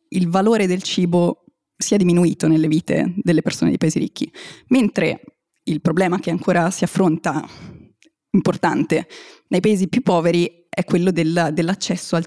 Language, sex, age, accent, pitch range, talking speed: Italian, female, 20-39, native, 165-190 Hz, 140 wpm